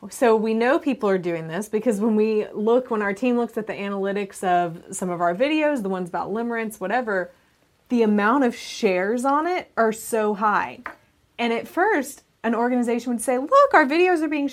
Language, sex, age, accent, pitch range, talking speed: English, female, 20-39, American, 185-235 Hz, 200 wpm